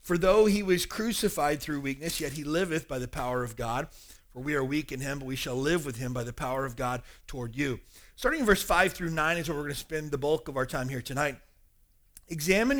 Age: 40-59